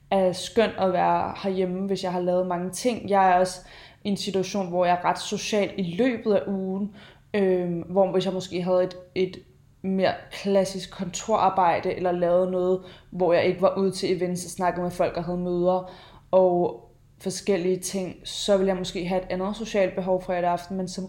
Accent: native